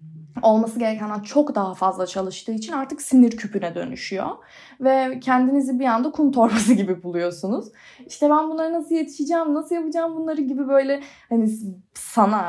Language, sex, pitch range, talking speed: Turkish, female, 200-280 Hz, 150 wpm